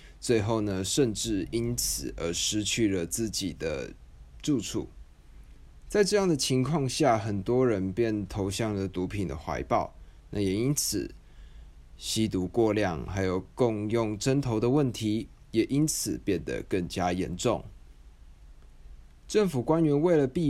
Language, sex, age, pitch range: Chinese, male, 20-39, 90-130 Hz